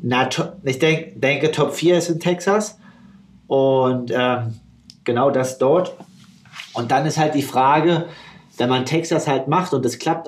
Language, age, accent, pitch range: German, 40-59, German, 125-155 Hz